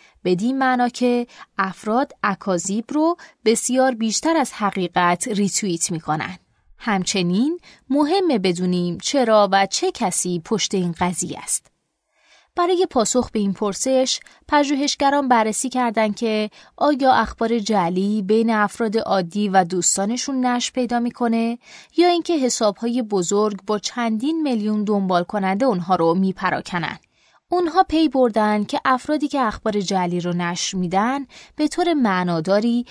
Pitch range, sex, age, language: 190-260 Hz, female, 20-39, Persian